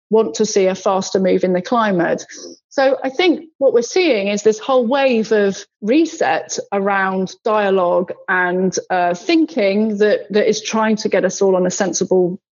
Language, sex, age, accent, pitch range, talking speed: English, female, 30-49, British, 190-230 Hz, 175 wpm